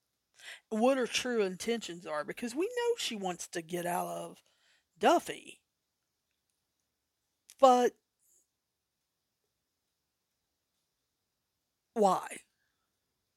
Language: English